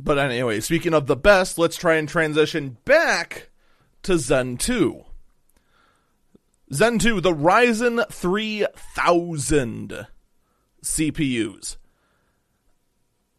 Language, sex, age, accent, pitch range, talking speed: English, male, 30-49, American, 135-180 Hz, 90 wpm